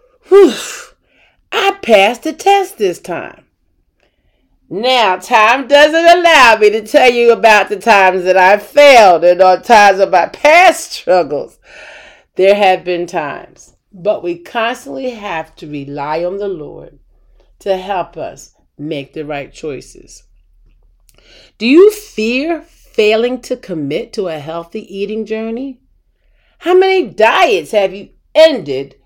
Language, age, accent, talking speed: English, 40-59, American, 135 wpm